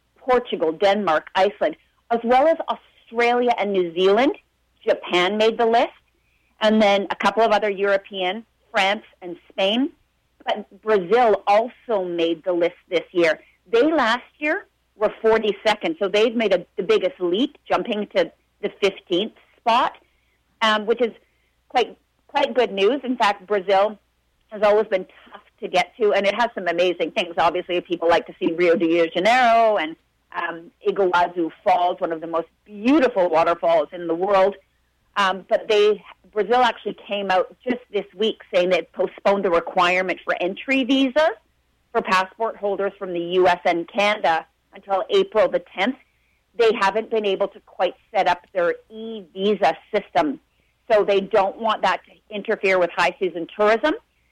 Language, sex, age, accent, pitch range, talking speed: English, female, 40-59, American, 180-225 Hz, 160 wpm